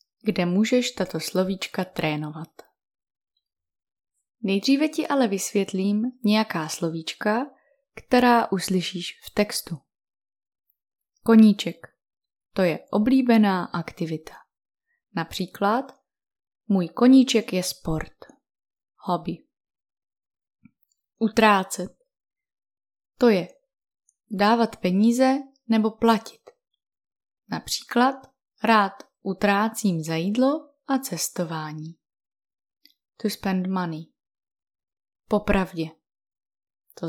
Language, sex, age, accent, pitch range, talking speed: Czech, female, 20-39, native, 170-235 Hz, 75 wpm